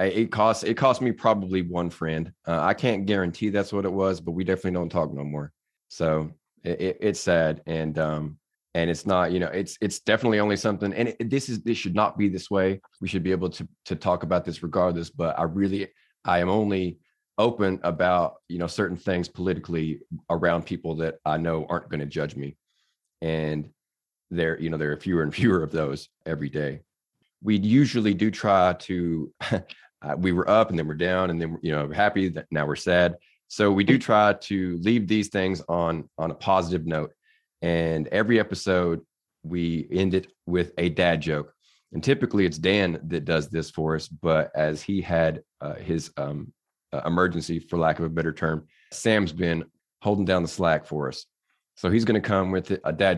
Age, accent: 30-49, American